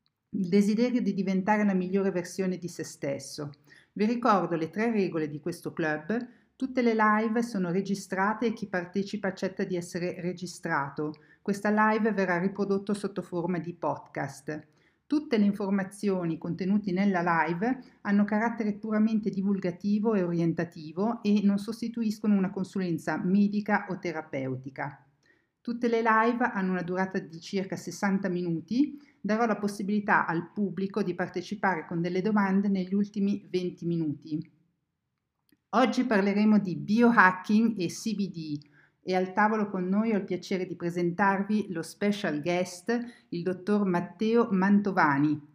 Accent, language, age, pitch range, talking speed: native, Italian, 50-69, 175-210 Hz, 140 wpm